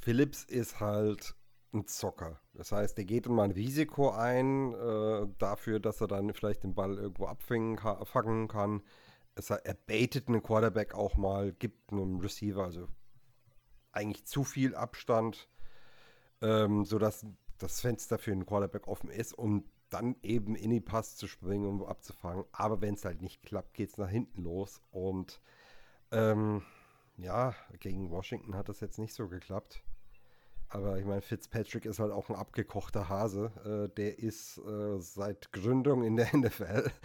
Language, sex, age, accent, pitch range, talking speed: German, male, 40-59, German, 100-120 Hz, 165 wpm